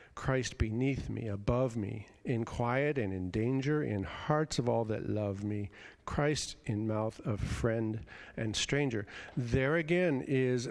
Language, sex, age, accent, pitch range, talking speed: English, male, 50-69, American, 110-145 Hz, 150 wpm